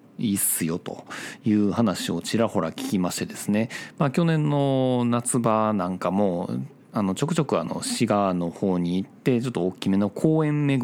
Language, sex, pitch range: Japanese, male, 95-140 Hz